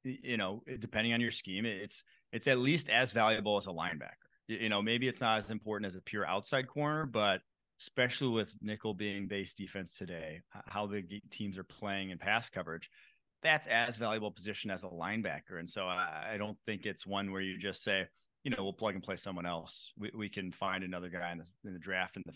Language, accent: English, American